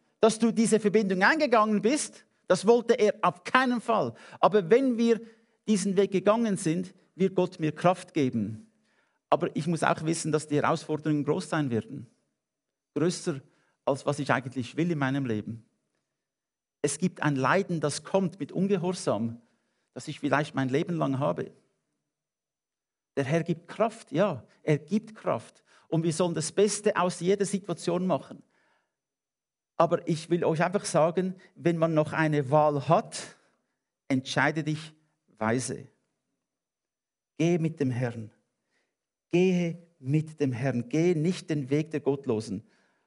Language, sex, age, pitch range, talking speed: English, male, 50-69, 145-185 Hz, 145 wpm